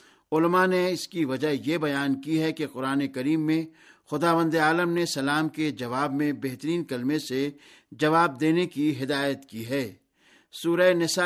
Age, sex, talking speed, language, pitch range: 60-79, male, 165 wpm, Urdu, 140-165 Hz